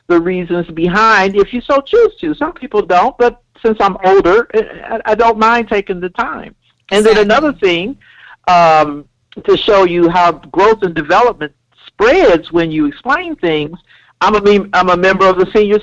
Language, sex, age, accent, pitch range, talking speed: English, male, 60-79, American, 165-225 Hz, 175 wpm